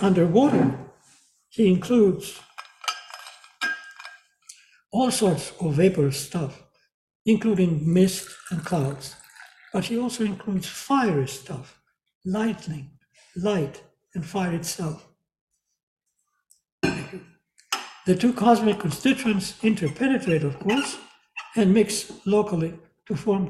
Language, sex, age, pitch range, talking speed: English, male, 60-79, 160-220 Hz, 90 wpm